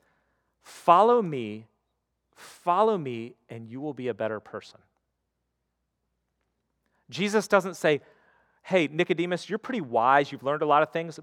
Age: 40-59